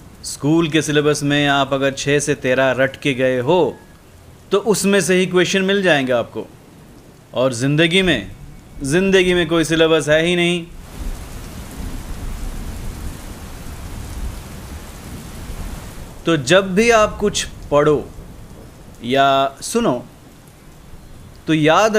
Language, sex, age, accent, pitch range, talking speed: Hindi, male, 30-49, native, 135-185 Hz, 110 wpm